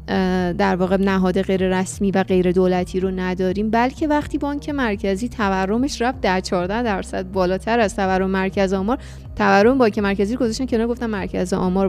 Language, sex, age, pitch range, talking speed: Persian, female, 30-49, 195-255 Hz, 160 wpm